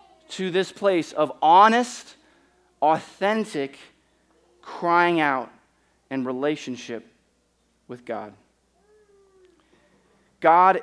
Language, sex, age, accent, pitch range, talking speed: English, male, 30-49, American, 140-195 Hz, 70 wpm